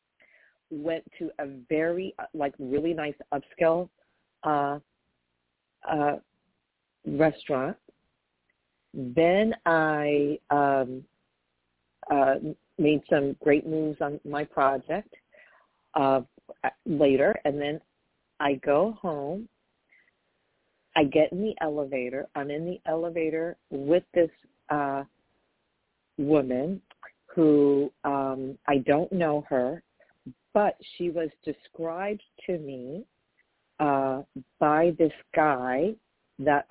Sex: female